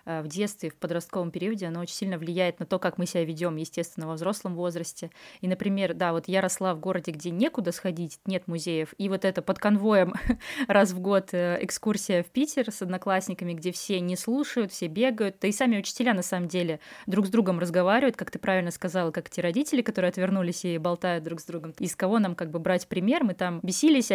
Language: Russian